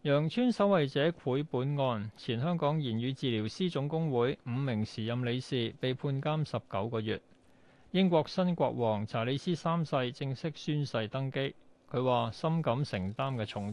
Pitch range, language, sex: 120-165 Hz, Chinese, male